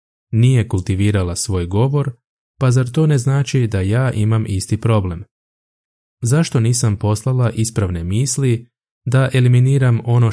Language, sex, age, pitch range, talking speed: Croatian, male, 20-39, 95-125 Hz, 130 wpm